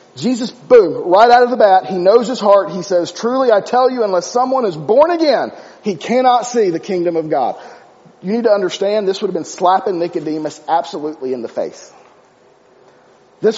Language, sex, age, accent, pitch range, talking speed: English, male, 40-59, American, 180-240 Hz, 195 wpm